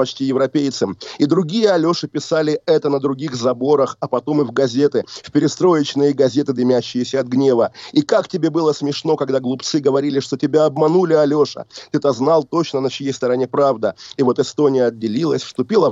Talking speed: 170 wpm